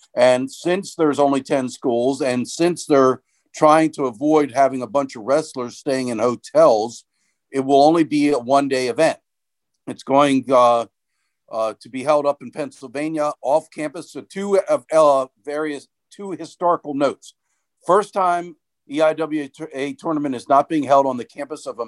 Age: 50-69